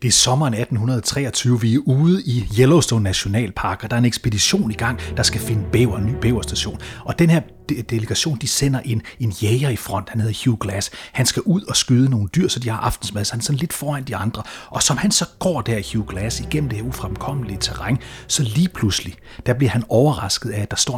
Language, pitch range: Danish, 110-135 Hz